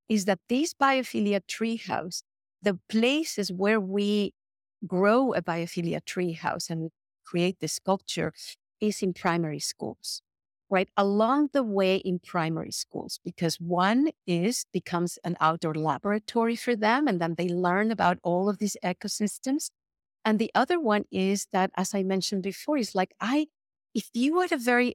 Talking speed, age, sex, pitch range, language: 155 wpm, 50-69, female, 180-235 Hz, English